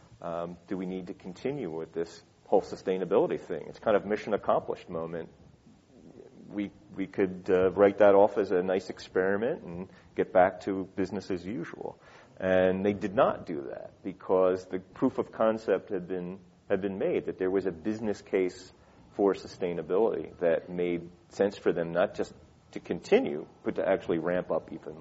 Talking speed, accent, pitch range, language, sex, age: 180 wpm, American, 85-100 Hz, English, male, 40-59